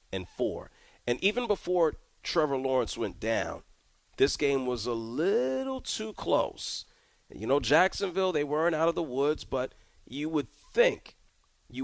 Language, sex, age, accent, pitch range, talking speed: English, male, 40-59, American, 105-160 Hz, 150 wpm